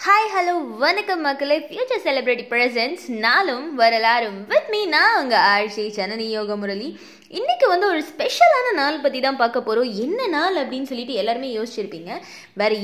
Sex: female